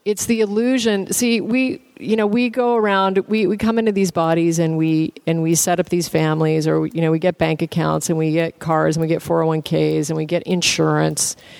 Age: 40-59